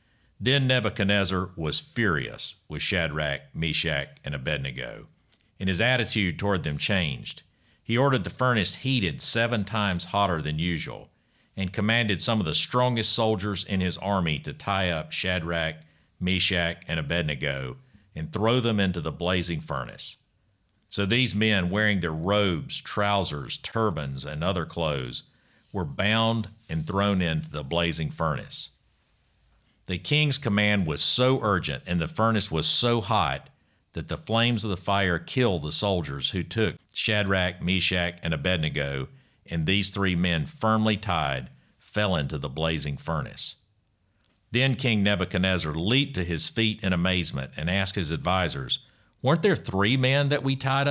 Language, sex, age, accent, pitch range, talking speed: English, male, 50-69, American, 85-115 Hz, 150 wpm